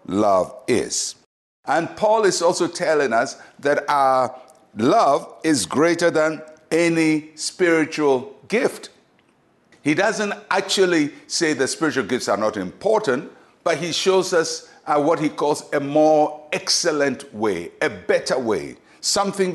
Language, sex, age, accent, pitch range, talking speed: English, male, 60-79, Nigerian, 155-195 Hz, 130 wpm